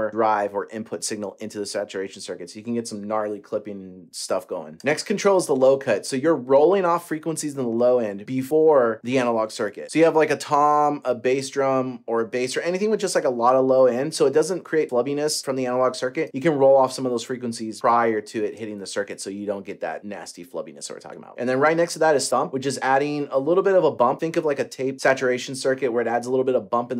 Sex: male